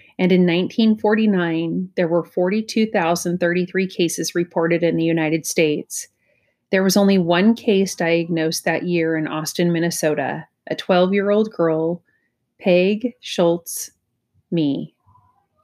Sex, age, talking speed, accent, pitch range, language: female, 30-49, 110 wpm, American, 170-200 Hz, English